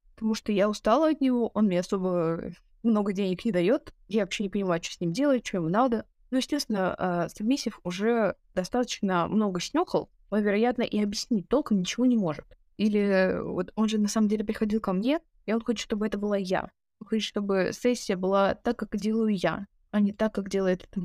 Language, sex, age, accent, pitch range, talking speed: Russian, female, 20-39, native, 195-235 Hz, 195 wpm